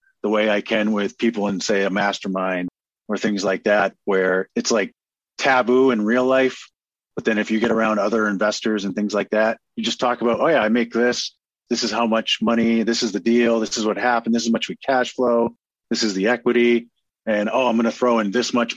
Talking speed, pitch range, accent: 235 wpm, 105-125 Hz, American